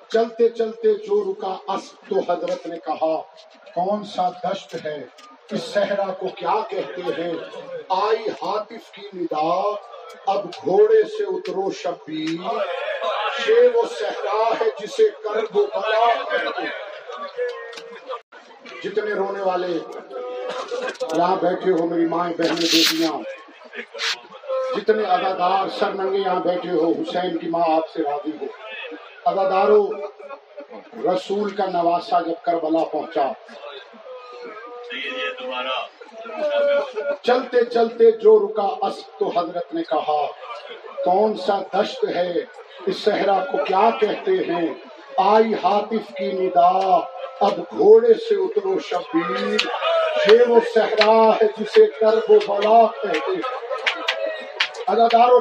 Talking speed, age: 105 wpm, 50-69